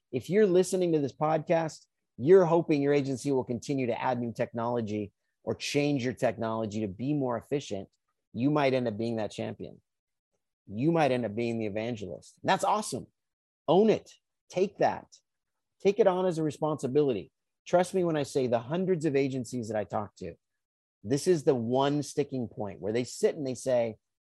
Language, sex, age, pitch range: English, male, 30-49, 120-165 Hz